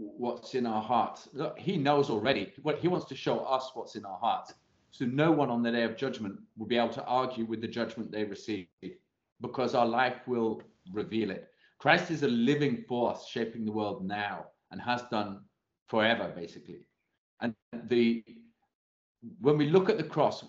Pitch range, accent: 105-130 Hz, British